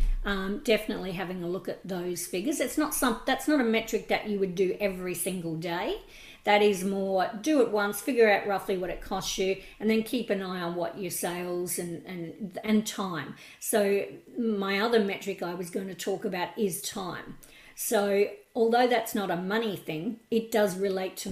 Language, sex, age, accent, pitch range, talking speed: English, female, 50-69, Australian, 185-220 Hz, 200 wpm